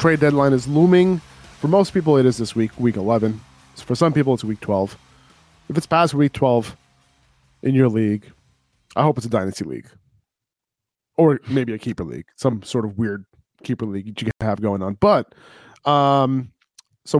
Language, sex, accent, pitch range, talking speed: English, male, American, 115-145 Hz, 190 wpm